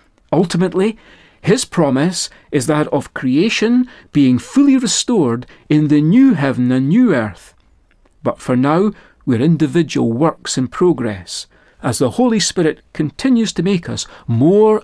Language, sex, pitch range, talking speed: English, male, 130-200 Hz, 140 wpm